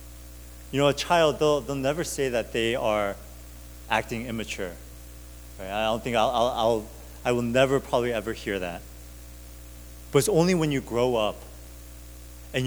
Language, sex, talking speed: English, male, 160 wpm